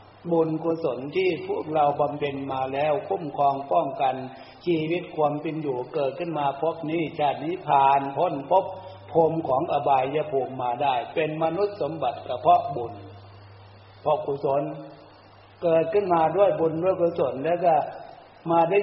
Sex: male